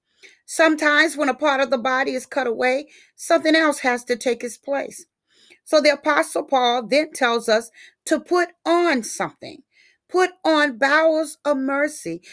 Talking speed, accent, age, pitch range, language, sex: 160 wpm, American, 40-59, 245-315 Hz, English, female